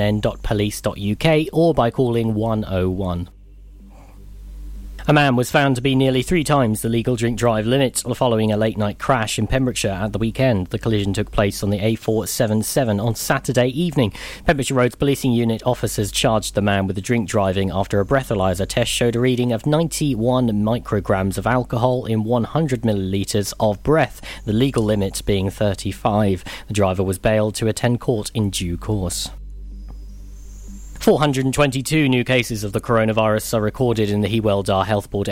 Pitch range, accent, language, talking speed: 105-130 Hz, British, English, 160 wpm